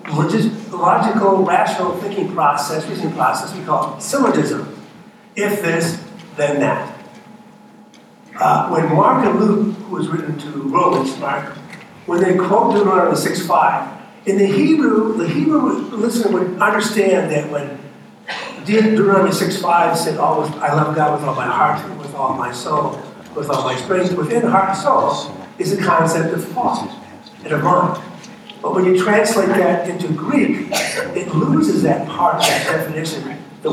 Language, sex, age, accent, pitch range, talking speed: English, male, 60-79, American, 150-210 Hz, 155 wpm